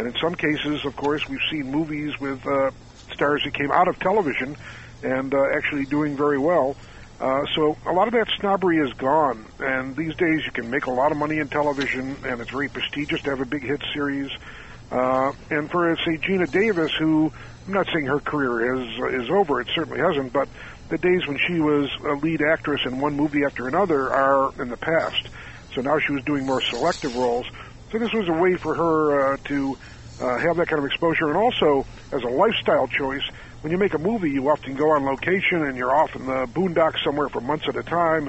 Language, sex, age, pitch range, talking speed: English, male, 50-69, 135-155 Hz, 220 wpm